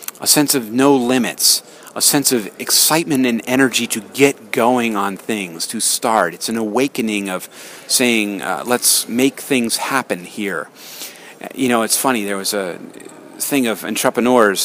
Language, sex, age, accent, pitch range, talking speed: English, male, 40-59, American, 105-130 Hz, 160 wpm